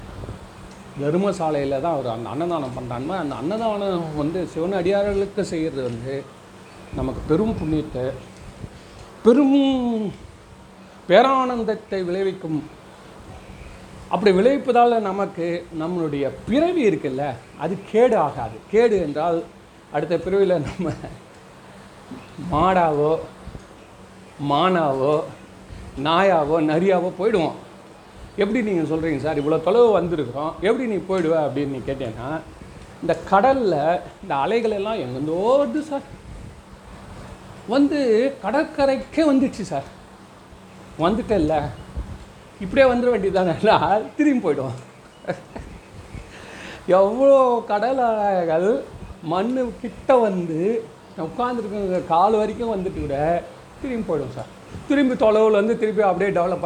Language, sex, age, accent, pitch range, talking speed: Tamil, male, 40-59, native, 155-225 Hz, 90 wpm